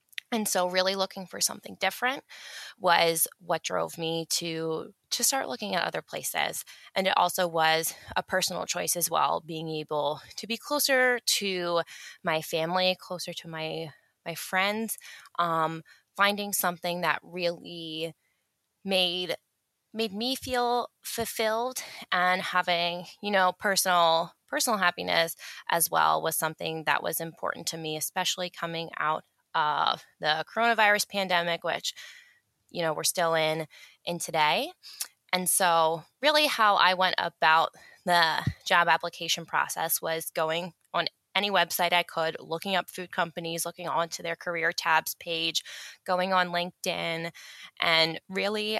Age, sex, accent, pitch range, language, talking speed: 20-39, female, American, 165-190 Hz, English, 140 wpm